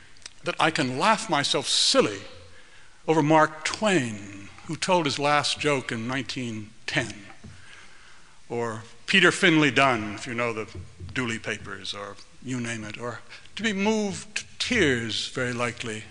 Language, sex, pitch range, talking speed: English, male, 115-145 Hz, 140 wpm